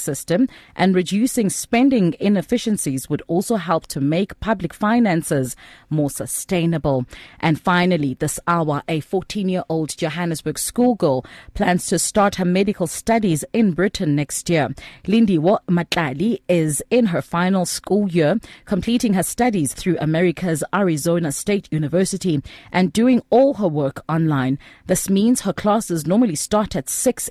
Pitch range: 155-205 Hz